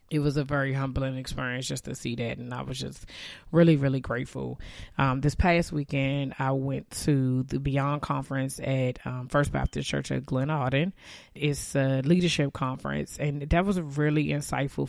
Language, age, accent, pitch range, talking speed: English, 20-39, American, 130-145 Hz, 175 wpm